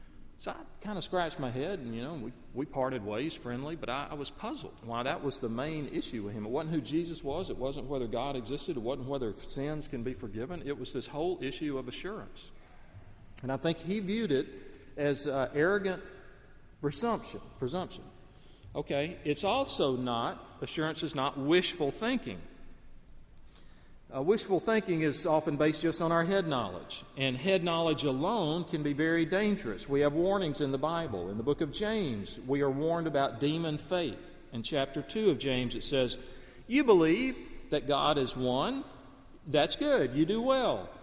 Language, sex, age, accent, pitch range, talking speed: English, male, 40-59, American, 135-175 Hz, 185 wpm